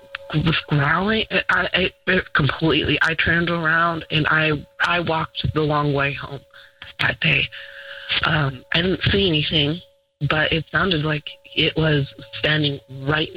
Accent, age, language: American, 30-49, English